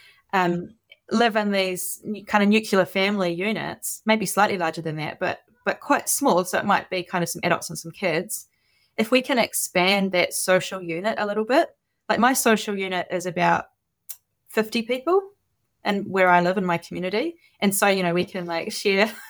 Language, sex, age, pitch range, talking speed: English, female, 20-39, 170-215 Hz, 195 wpm